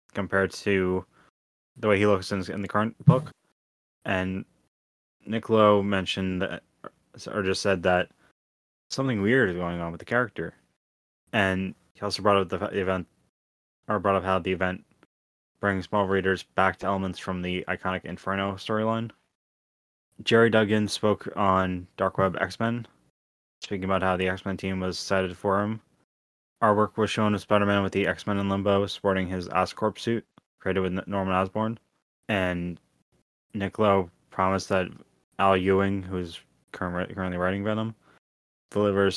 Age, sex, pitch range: 10-29, male, 90-100 Hz